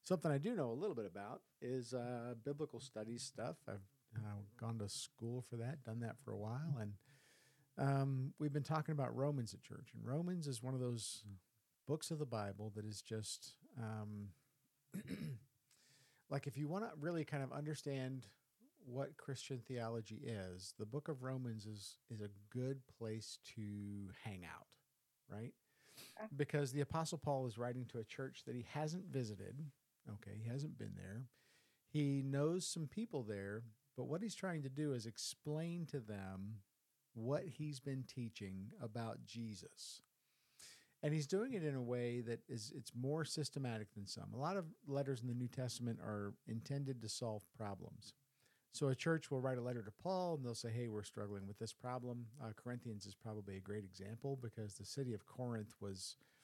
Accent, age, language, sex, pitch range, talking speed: American, 50-69, English, male, 110-145 Hz, 180 wpm